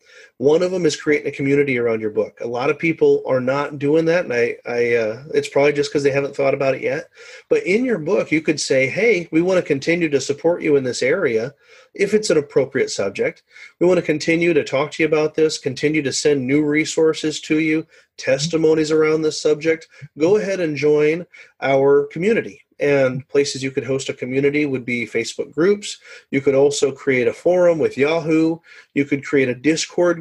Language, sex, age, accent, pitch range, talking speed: English, male, 40-59, American, 140-195 Hz, 210 wpm